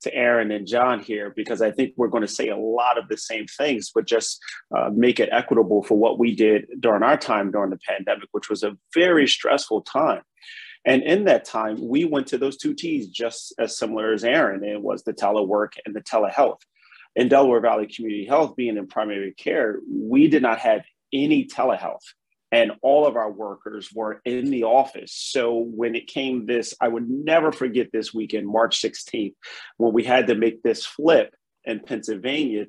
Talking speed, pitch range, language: 200 wpm, 110-135 Hz, English